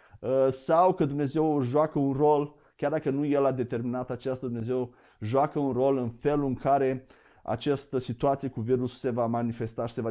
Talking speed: 185 wpm